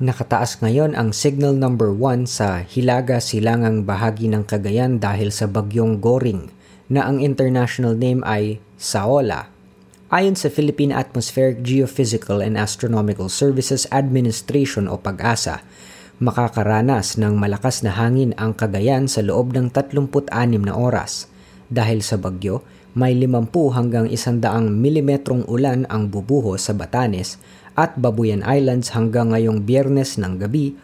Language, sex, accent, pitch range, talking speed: Filipino, female, native, 105-135 Hz, 130 wpm